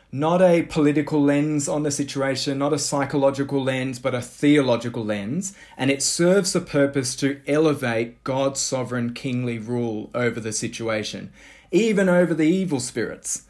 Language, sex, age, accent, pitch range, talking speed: English, male, 20-39, Australian, 125-155 Hz, 150 wpm